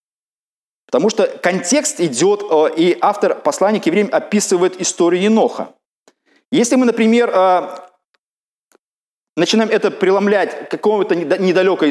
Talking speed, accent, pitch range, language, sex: 100 wpm, native, 170-250 Hz, Russian, male